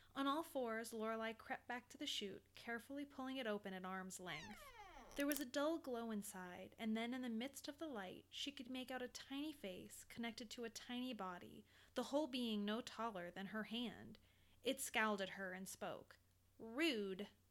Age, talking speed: 20-39, 195 wpm